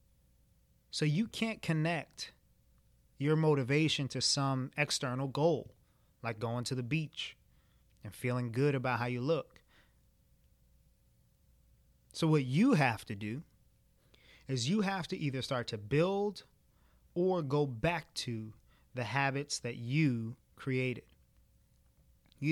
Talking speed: 125 wpm